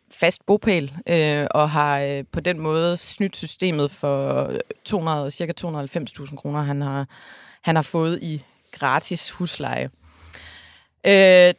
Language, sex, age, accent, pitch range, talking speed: Danish, female, 30-49, native, 150-200 Hz, 125 wpm